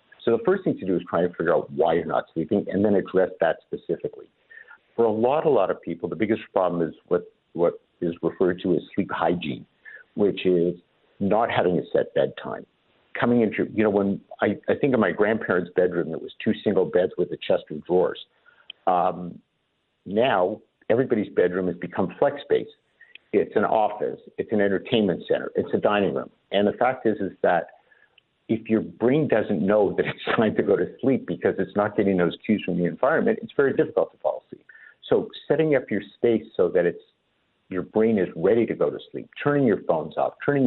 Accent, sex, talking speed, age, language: American, male, 210 wpm, 50-69, English